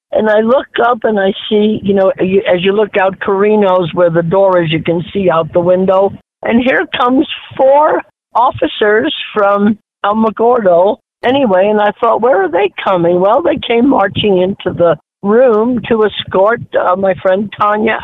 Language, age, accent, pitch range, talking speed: English, 60-79, American, 180-215 Hz, 175 wpm